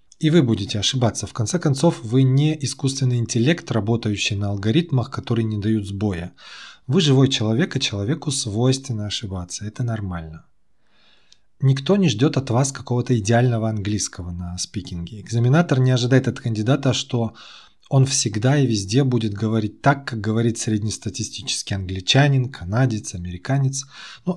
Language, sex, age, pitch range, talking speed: Russian, male, 20-39, 105-135 Hz, 140 wpm